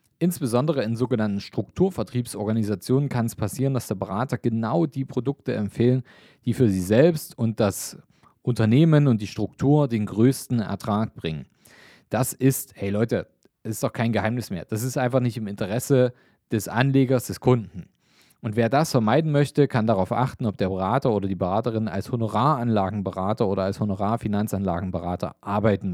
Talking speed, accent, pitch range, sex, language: 155 wpm, German, 100-125 Hz, male, German